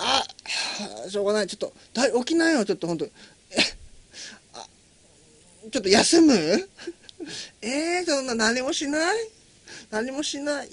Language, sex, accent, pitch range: Japanese, male, native, 180-275 Hz